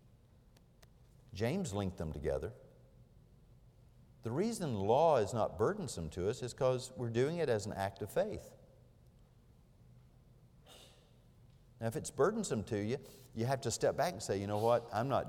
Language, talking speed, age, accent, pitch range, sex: English, 155 wpm, 50-69, American, 90-125 Hz, male